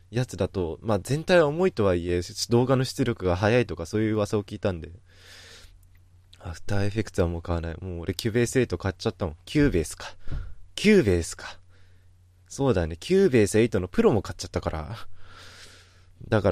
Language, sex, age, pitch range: Japanese, male, 20-39, 90-120 Hz